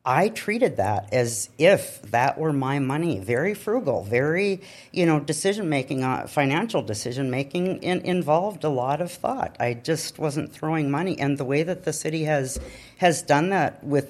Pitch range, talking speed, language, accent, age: 130-160 Hz, 160 wpm, English, American, 50-69